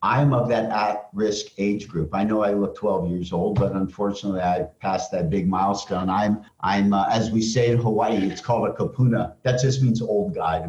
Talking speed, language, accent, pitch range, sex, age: 220 wpm, English, American, 105-130 Hz, male, 50-69